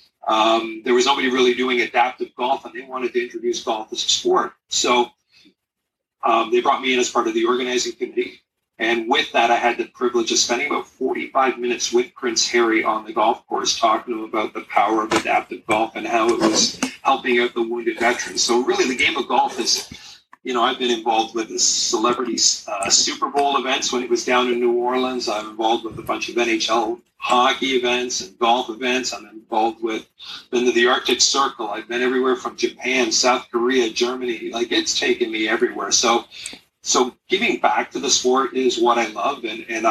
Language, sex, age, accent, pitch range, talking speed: English, male, 40-59, American, 320-365 Hz, 205 wpm